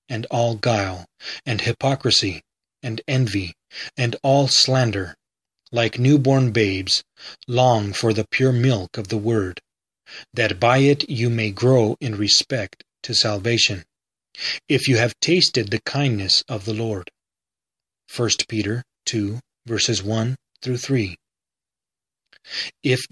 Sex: male